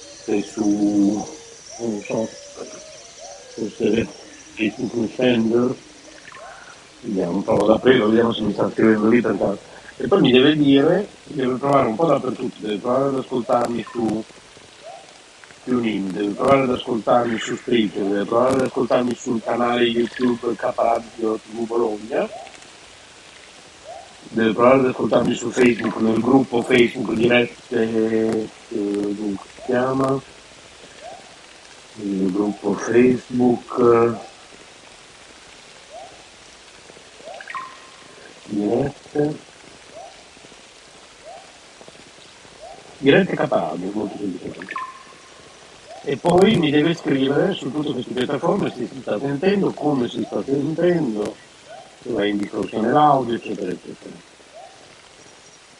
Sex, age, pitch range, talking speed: male, 50-69, 110-130 Hz, 95 wpm